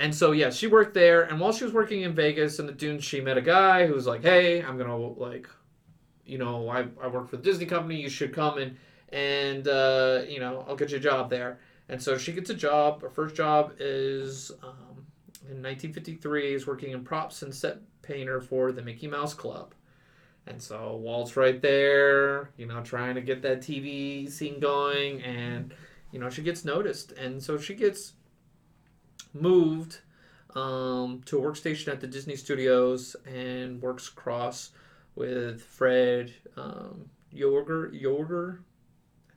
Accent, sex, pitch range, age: American, male, 125-155 Hz, 30-49